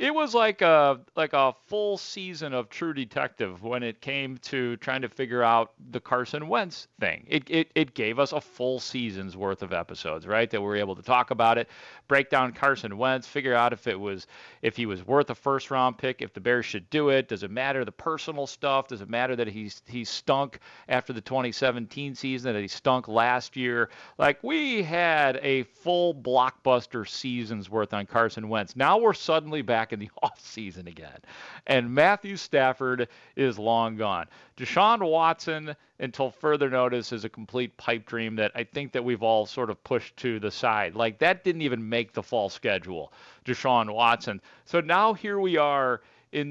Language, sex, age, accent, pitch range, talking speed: English, male, 40-59, American, 115-145 Hz, 195 wpm